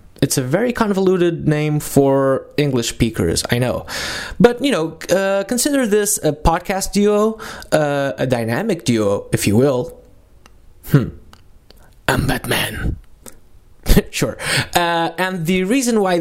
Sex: male